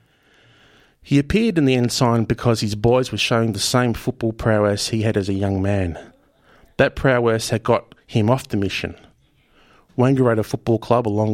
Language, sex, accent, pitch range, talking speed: English, male, Australian, 100-120 Hz, 170 wpm